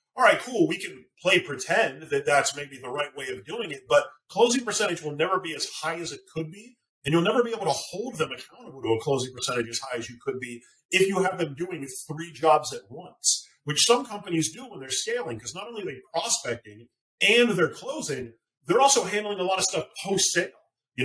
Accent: American